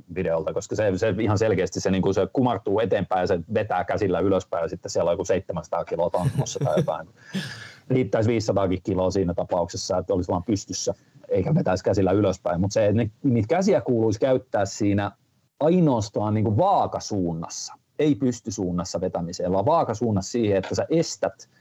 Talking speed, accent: 160 wpm, native